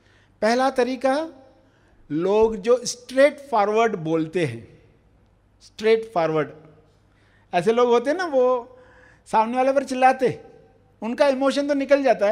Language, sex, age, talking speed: Hindi, male, 50-69, 120 wpm